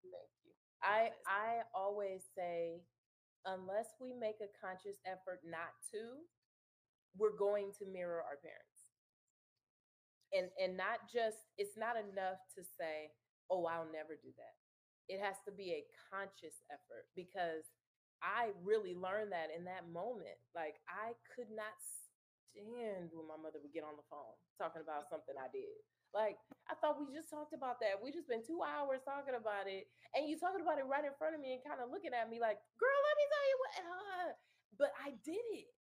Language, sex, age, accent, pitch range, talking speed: English, female, 20-39, American, 165-250 Hz, 185 wpm